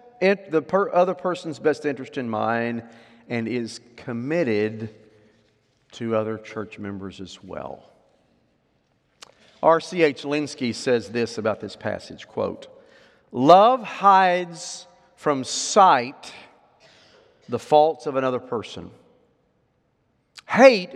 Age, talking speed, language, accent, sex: 50-69, 105 wpm, English, American, male